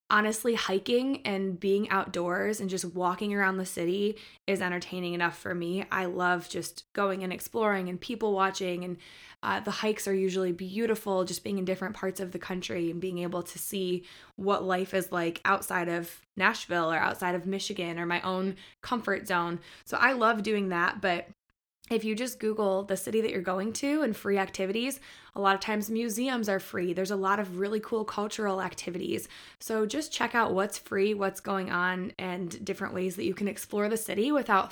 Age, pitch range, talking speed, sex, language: 20-39, 185-215 Hz, 195 wpm, female, English